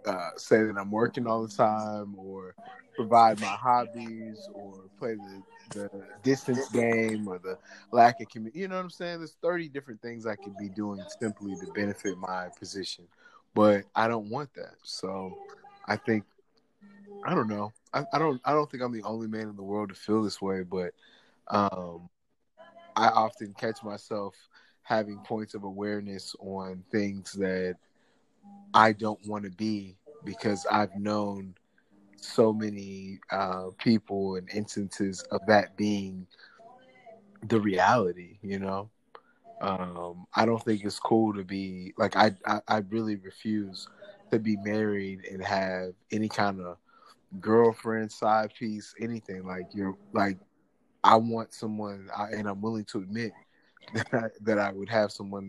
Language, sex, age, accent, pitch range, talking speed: English, male, 20-39, American, 95-115 Hz, 160 wpm